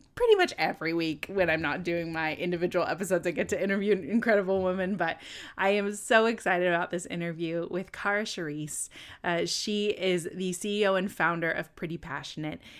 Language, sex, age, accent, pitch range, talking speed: English, female, 20-39, American, 170-225 Hz, 185 wpm